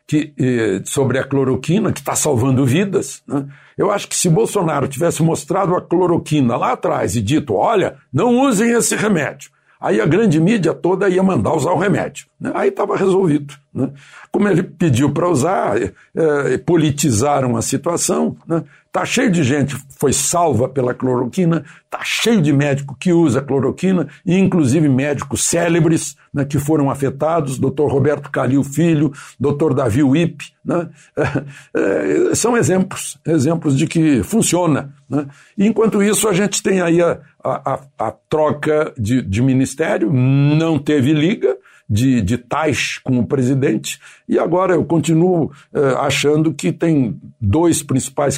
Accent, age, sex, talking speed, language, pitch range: Brazilian, 60-79, male, 150 wpm, Portuguese, 135-165 Hz